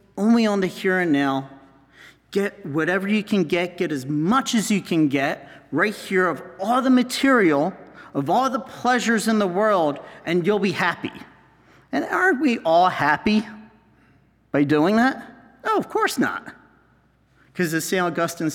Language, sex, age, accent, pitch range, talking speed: English, male, 40-59, American, 165-220 Hz, 165 wpm